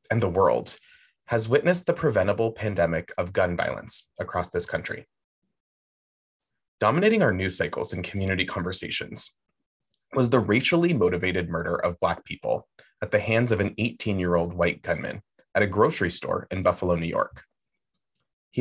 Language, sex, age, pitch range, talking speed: English, male, 20-39, 90-120 Hz, 150 wpm